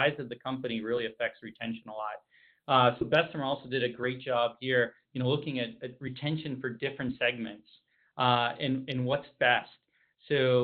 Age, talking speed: 40-59, 180 wpm